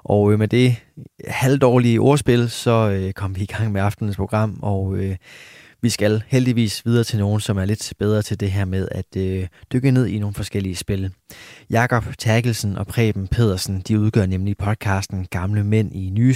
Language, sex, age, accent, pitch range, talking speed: Danish, male, 20-39, native, 95-120 Hz, 175 wpm